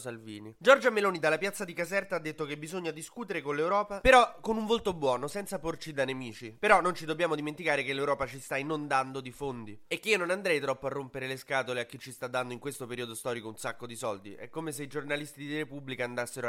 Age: 20-39